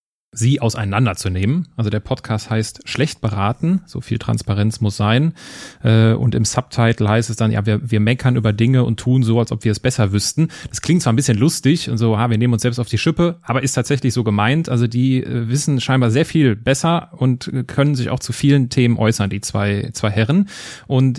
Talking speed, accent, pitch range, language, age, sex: 210 wpm, German, 110-135 Hz, German, 30-49, male